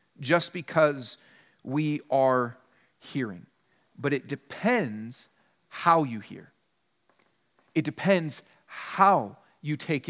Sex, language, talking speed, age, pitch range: male, English, 95 wpm, 40-59, 145-180 Hz